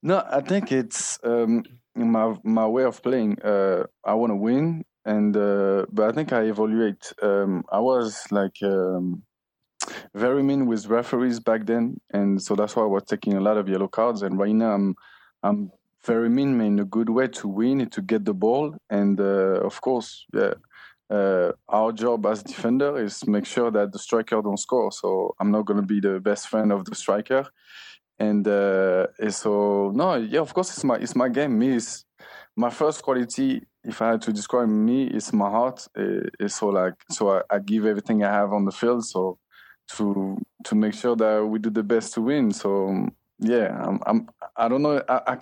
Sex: male